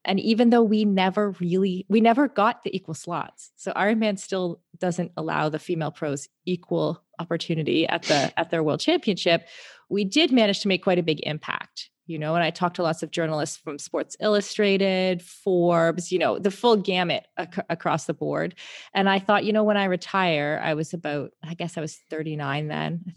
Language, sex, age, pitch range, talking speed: English, female, 30-49, 160-205 Hz, 200 wpm